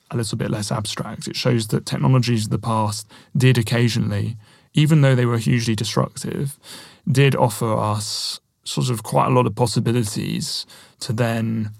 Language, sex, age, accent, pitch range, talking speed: Swedish, male, 30-49, British, 110-130 Hz, 165 wpm